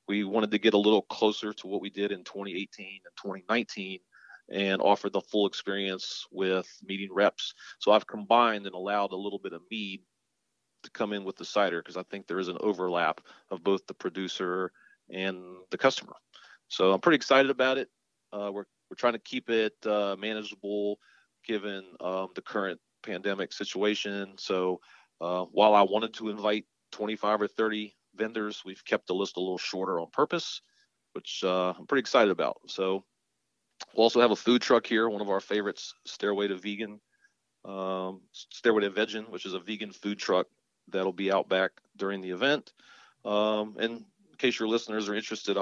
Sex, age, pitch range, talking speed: male, 40-59, 95-110 Hz, 185 wpm